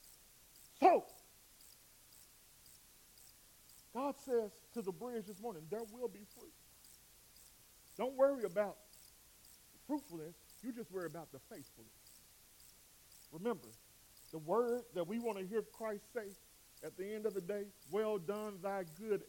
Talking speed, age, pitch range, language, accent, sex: 130 wpm, 40-59, 160-230 Hz, English, American, male